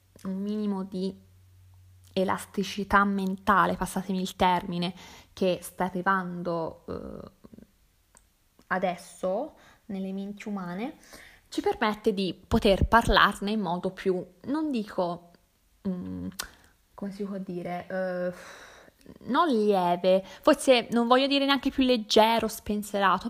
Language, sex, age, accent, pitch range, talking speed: Italian, female, 20-39, native, 185-220 Hz, 110 wpm